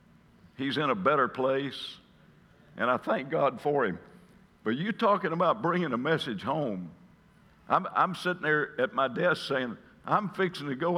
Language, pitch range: English, 140-175 Hz